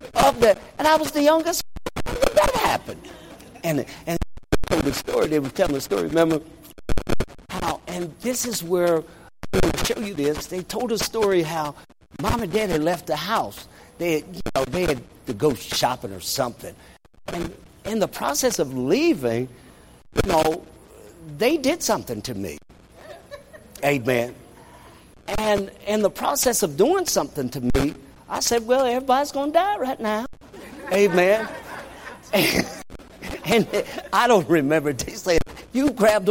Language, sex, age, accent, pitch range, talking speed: English, male, 60-79, American, 165-265 Hz, 155 wpm